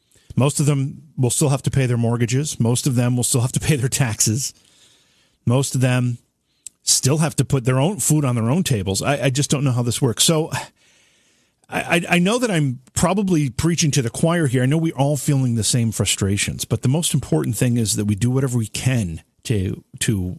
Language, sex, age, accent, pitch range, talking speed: English, male, 40-59, American, 110-140 Hz, 225 wpm